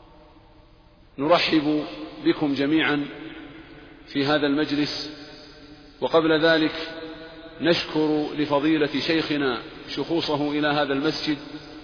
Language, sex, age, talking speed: Arabic, male, 40-59, 75 wpm